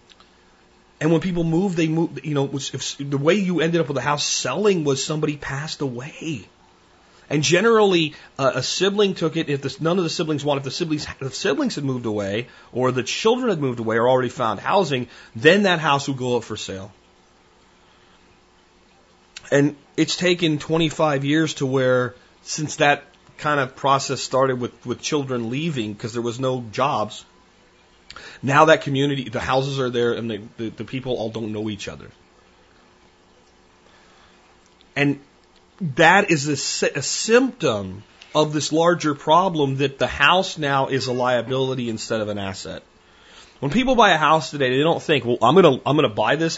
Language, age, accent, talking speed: English, 40-59, American, 185 wpm